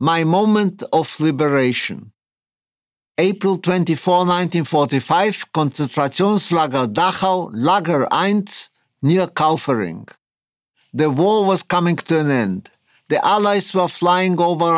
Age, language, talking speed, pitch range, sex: 50-69, English, 100 wpm, 145-185 Hz, male